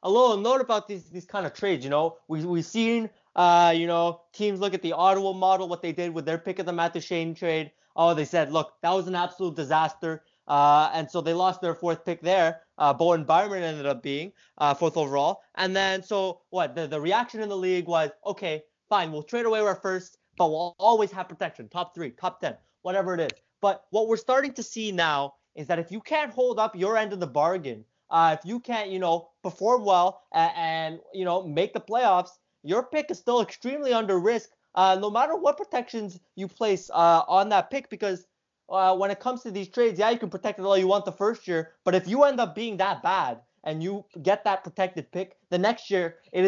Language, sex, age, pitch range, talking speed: English, male, 20-39, 165-205 Hz, 230 wpm